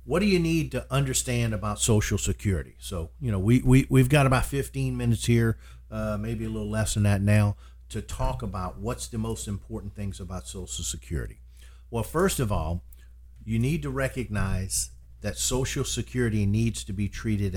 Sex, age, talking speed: male, 50-69, 190 wpm